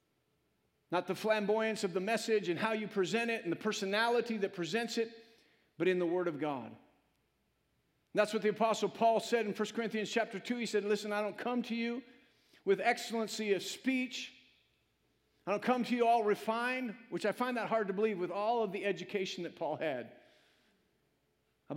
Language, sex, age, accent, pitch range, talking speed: English, male, 50-69, American, 195-230 Hz, 195 wpm